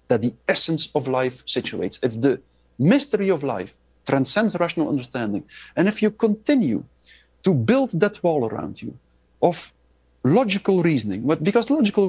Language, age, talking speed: English, 50-69, 145 wpm